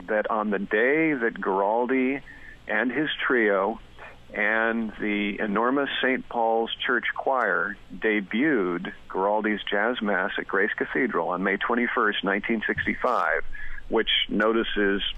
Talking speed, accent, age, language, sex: 115 wpm, American, 50-69, English, male